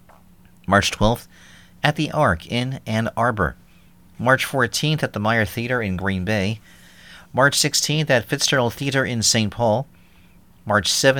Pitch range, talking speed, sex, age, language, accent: 95-130 Hz, 140 wpm, male, 40-59, English, American